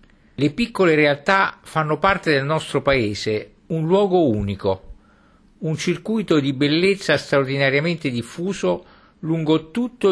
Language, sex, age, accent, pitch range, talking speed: Italian, male, 50-69, native, 125-175 Hz, 115 wpm